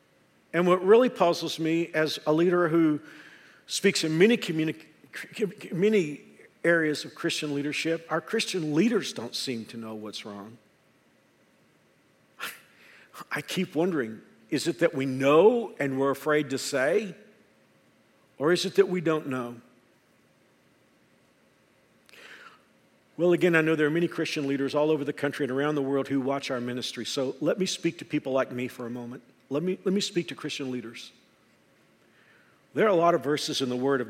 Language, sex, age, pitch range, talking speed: English, male, 50-69, 135-170 Hz, 170 wpm